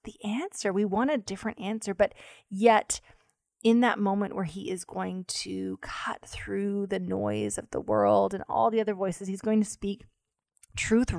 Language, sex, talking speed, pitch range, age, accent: English, female, 180 wpm, 170-210 Hz, 20-39, American